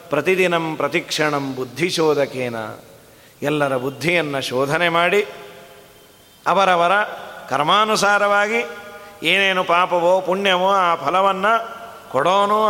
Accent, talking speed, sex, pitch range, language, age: native, 70 wpm, male, 180-220 Hz, Kannada, 30-49